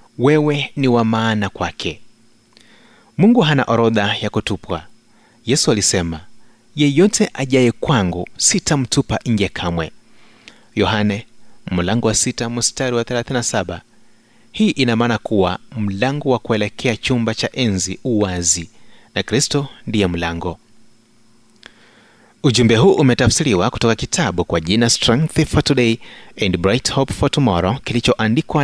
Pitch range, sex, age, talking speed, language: 95-130 Hz, male, 30-49, 115 wpm, Swahili